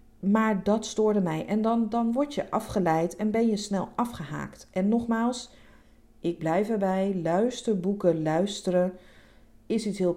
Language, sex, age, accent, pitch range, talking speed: Dutch, female, 40-59, Dutch, 160-215 Hz, 150 wpm